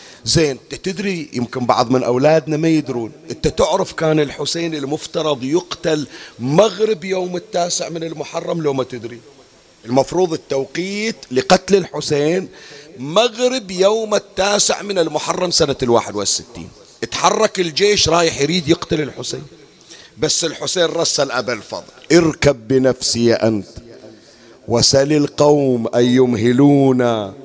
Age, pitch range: 50-69, 130-175 Hz